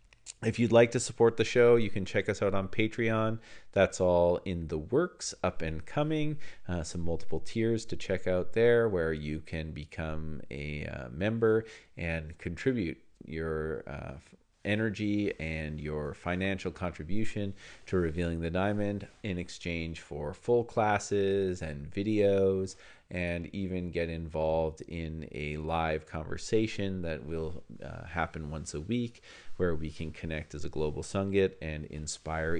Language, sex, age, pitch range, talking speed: English, male, 40-59, 80-110 Hz, 150 wpm